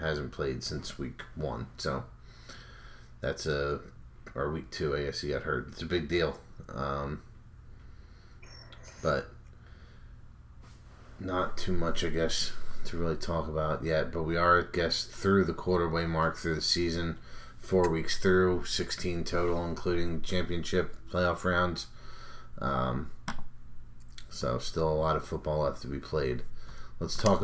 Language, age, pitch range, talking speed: English, 30-49, 75-85 Hz, 145 wpm